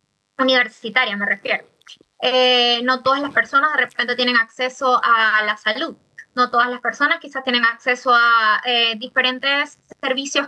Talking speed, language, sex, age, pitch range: 150 wpm, Spanish, female, 20-39, 250-300 Hz